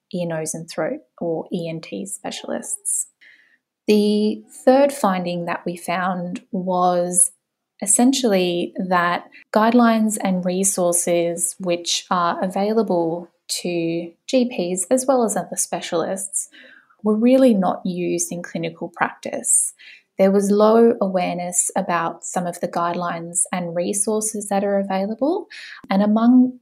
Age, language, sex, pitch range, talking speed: 10-29, English, female, 175-215 Hz, 115 wpm